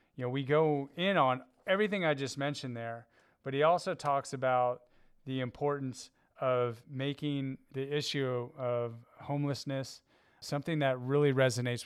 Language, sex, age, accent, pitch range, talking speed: English, male, 30-49, American, 125-140 Hz, 140 wpm